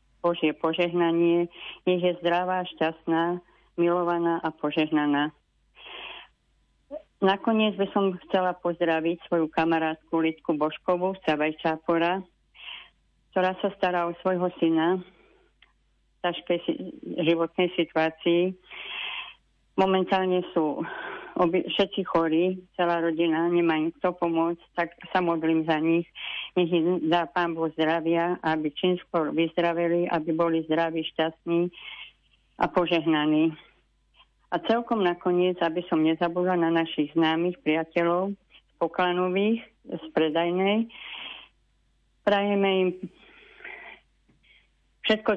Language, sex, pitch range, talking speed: Slovak, female, 165-180 Hz, 105 wpm